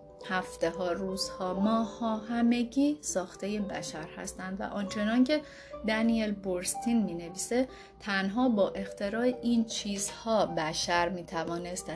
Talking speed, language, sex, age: 115 wpm, Persian, female, 30-49